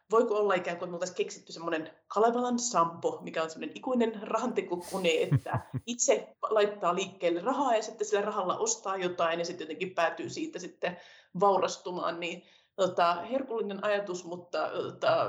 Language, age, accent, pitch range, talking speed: Finnish, 30-49, native, 175-200 Hz, 150 wpm